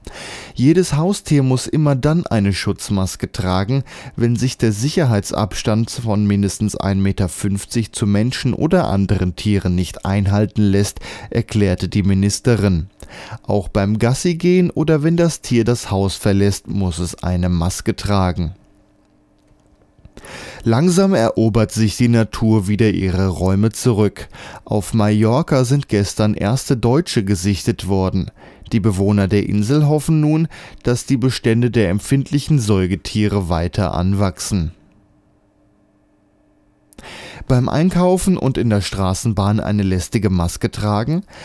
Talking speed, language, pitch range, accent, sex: 120 wpm, German, 100-130 Hz, German, male